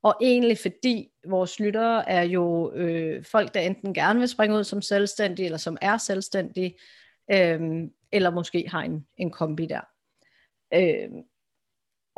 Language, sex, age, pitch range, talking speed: Danish, female, 30-49, 175-210 Hz, 150 wpm